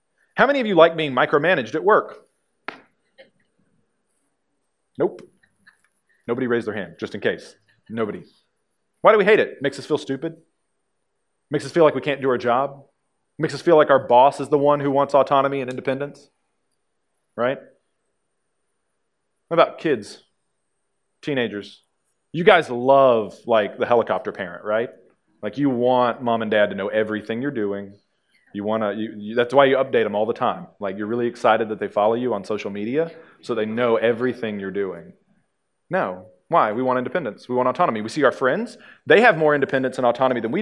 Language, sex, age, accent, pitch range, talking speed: English, male, 30-49, American, 115-155 Hz, 180 wpm